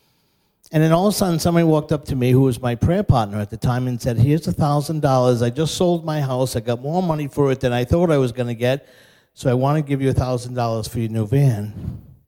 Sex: male